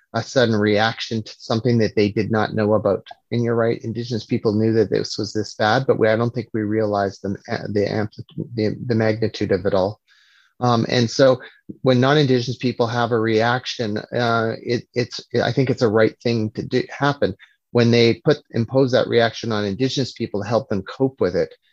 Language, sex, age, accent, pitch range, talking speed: English, male, 30-49, American, 105-120 Hz, 205 wpm